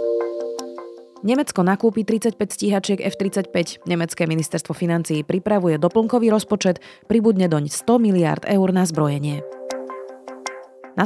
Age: 30-49